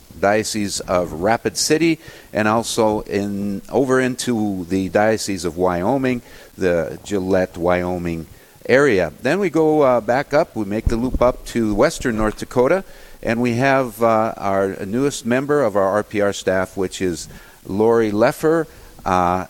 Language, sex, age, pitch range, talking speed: English, male, 50-69, 100-125 Hz, 145 wpm